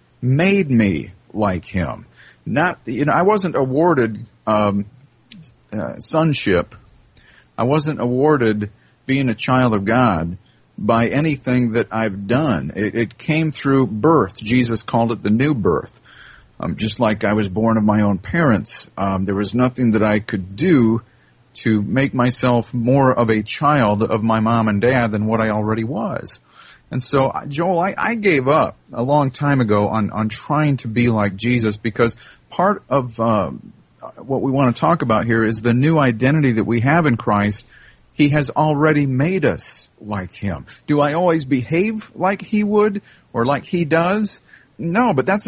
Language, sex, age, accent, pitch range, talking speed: English, male, 40-59, American, 110-150 Hz, 175 wpm